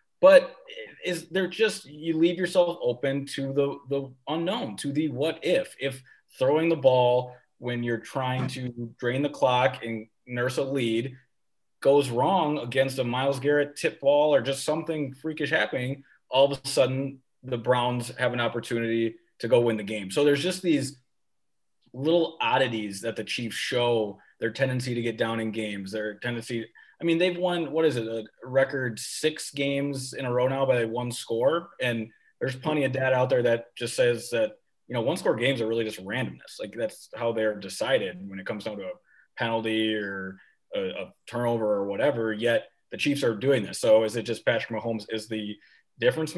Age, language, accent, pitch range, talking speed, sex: 20-39, English, American, 115-145 Hz, 190 wpm, male